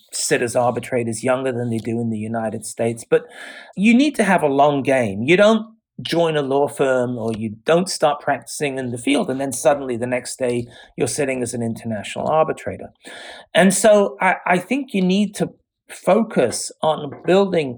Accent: British